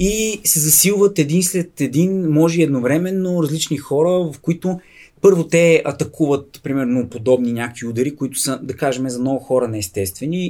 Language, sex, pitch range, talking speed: Bulgarian, male, 130-175 Hz, 160 wpm